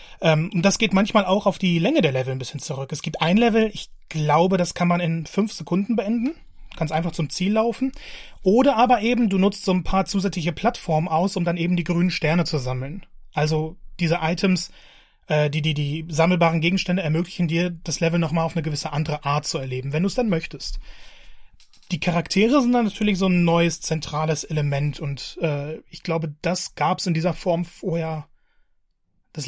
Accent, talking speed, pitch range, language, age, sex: German, 200 wpm, 155-195 Hz, German, 30-49, male